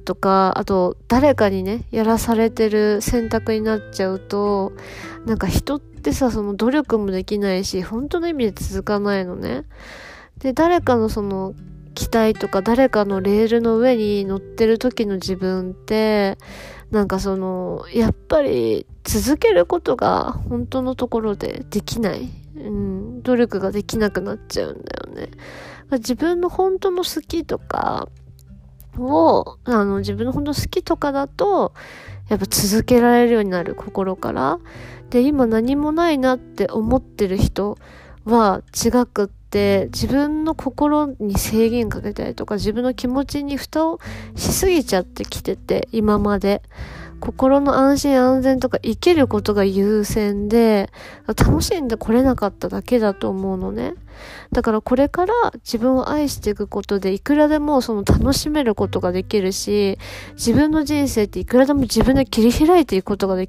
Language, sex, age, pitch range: Japanese, female, 20-39, 195-260 Hz